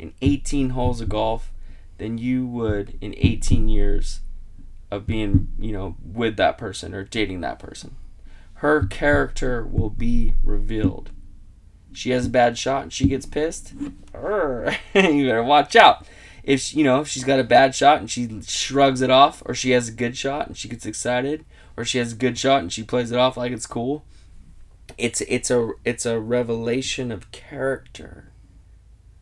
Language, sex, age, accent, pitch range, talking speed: English, male, 20-39, American, 95-130 Hz, 175 wpm